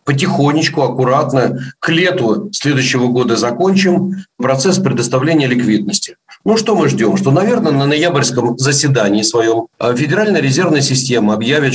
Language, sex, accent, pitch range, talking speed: Russian, male, native, 125-175 Hz, 125 wpm